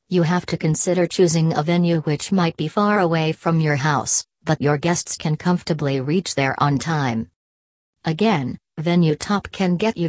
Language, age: English, 40-59